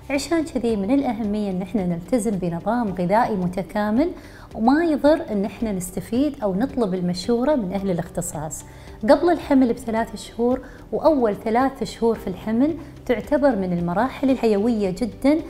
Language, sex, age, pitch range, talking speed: Arabic, female, 30-49, 195-265 Hz, 135 wpm